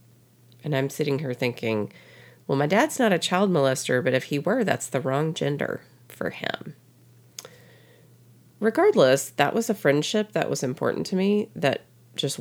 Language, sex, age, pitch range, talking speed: English, female, 30-49, 120-160 Hz, 165 wpm